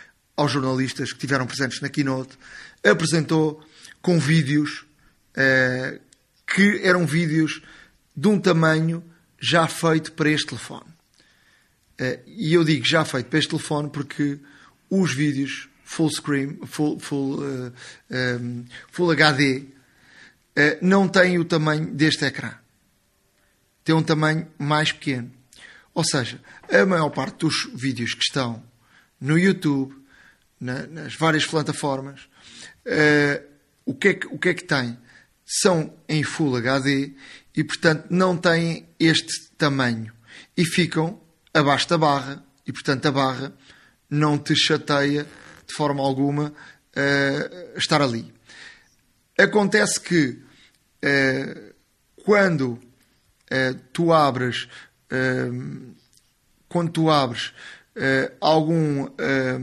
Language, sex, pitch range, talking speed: Portuguese, male, 130-160 Hz, 125 wpm